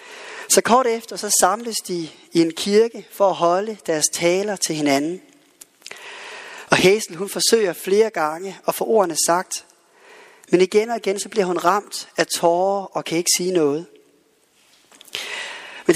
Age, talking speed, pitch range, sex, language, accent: 30-49, 160 wpm, 175-285 Hz, male, Danish, native